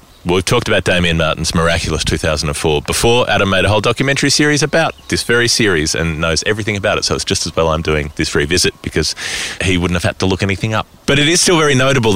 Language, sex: English, male